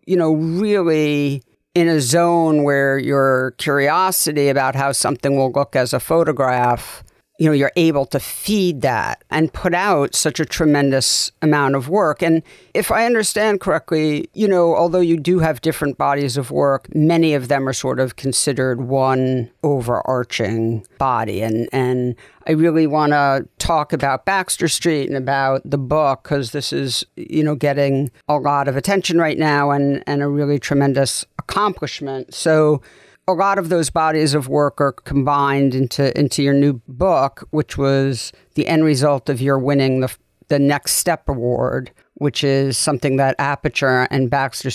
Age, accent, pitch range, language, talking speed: 60-79, American, 130-155 Hz, English, 170 wpm